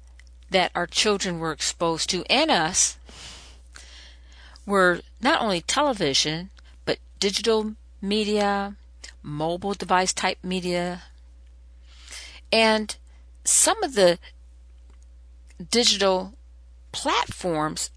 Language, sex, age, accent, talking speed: English, female, 50-69, American, 85 wpm